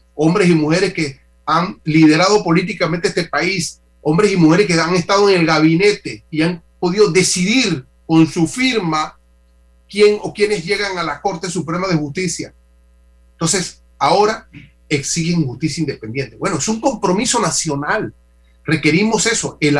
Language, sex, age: Spanish, male, 40-59